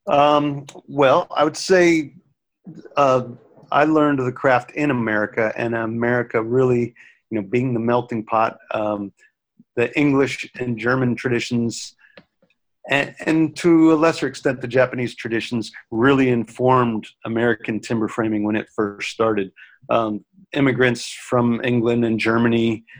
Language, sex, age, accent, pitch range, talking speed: English, male, 40-59, American, 115-130 Hz, 135 wpm